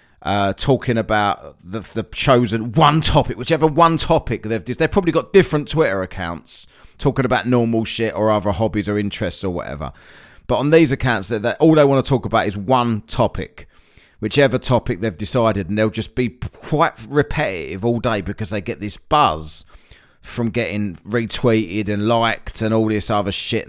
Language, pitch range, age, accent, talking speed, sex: English, 105-135 Hz, 30-49, British, 180 wpm, male